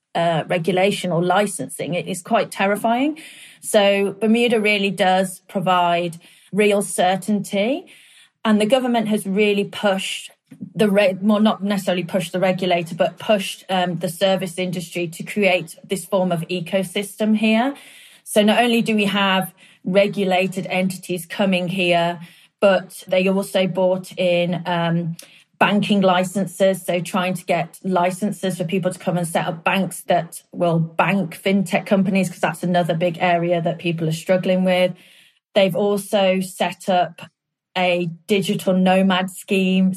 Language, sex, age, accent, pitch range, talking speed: English, female, 30-49, British, 180-200 Hz, 145 wpm